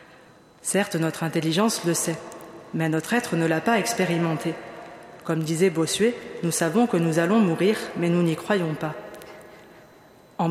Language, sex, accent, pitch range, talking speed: French, female, French, 165-205 Hz, 155 wpm